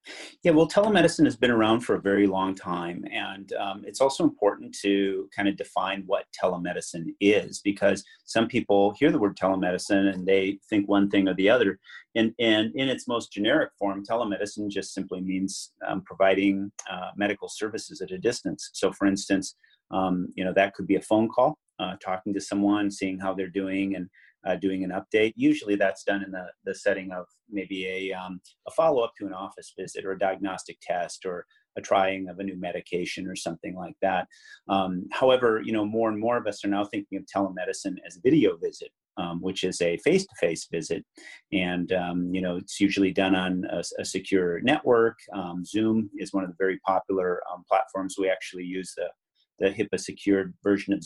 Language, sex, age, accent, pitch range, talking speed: English, male, 30-49, American, 95-110 Hz, 200 wpm